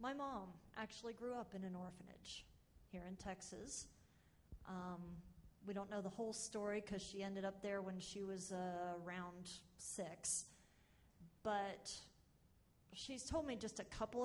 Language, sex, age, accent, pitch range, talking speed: English, female, 40-59, American, 180-215 Hz, 150 wpm